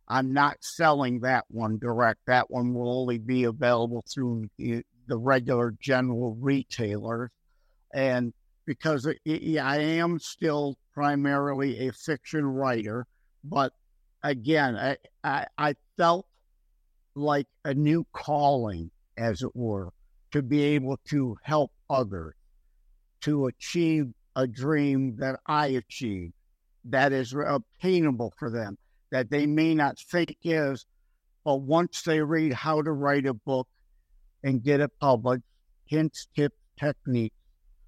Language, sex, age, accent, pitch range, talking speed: English, male, 50-69, American, 120-150 Hz, 125 wpm